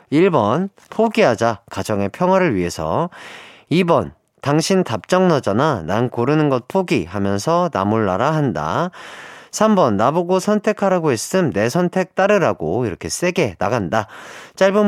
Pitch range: 120-180 Hz